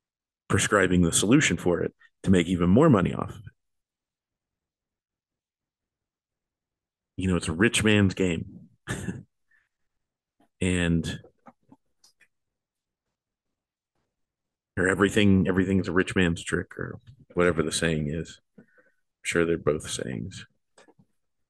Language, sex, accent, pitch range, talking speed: English, male, American, 85-95 Hz, 105 wpm